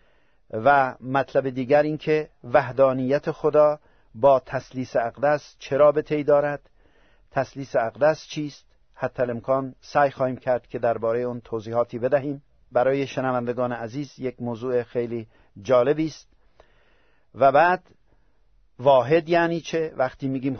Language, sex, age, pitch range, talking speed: Persian, male, 50-69, 125-155 Hz, 120 wpm